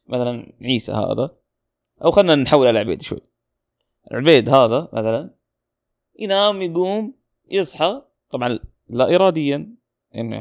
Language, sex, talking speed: Arabic, male, 110 wpm